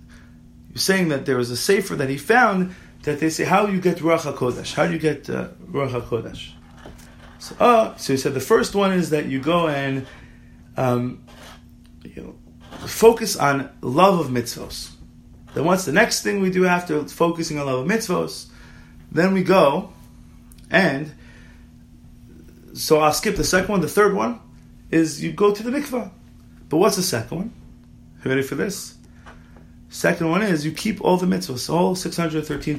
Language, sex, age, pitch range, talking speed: English, male, 30-49, 120-195 Hz, 185 wpm